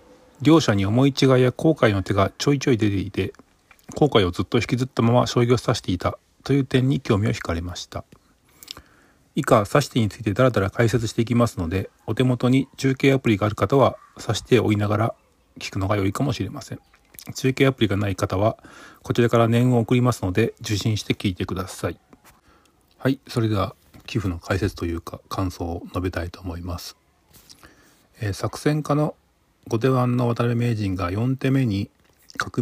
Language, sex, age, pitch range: Japanese, male, 40-59, 100-130 Hz